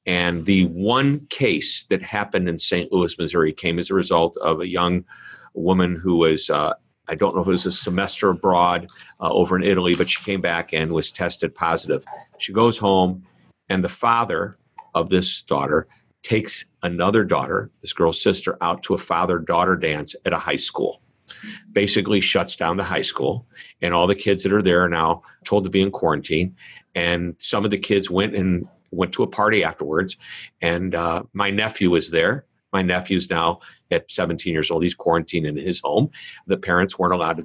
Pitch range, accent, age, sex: 85-100 Hz, American, 50-69, male